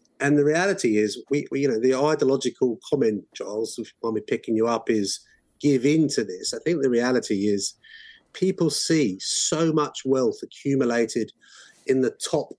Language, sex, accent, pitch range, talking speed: English, male, British, 115-155 Hz, 180 wpm